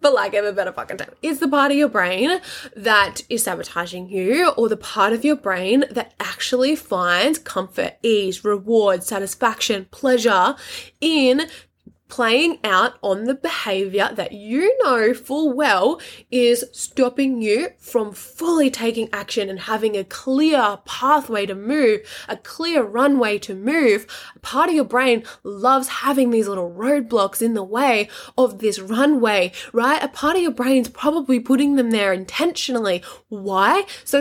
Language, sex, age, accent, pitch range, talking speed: English, female, 10-29, Australian, 210-270 Hz, 155 wpm